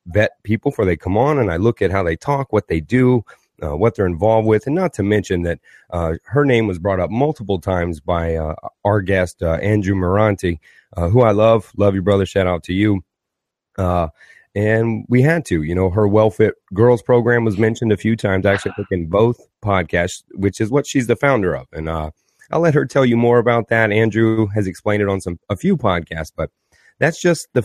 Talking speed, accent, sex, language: 225 wpm, American, male, English